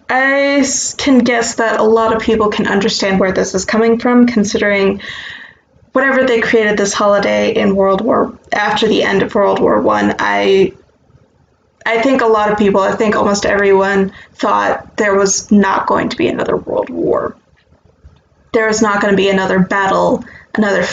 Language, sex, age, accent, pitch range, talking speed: English, female, 20-39, American, 195-235 Hz, 175 wpm